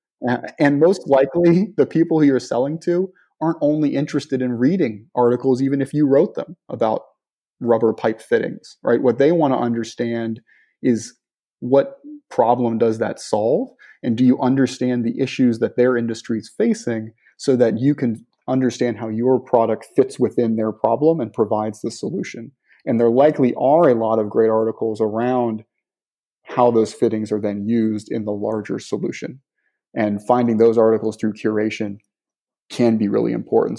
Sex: male